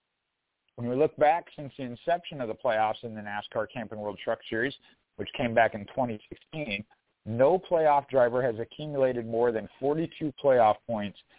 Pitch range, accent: 115-140 Hz, American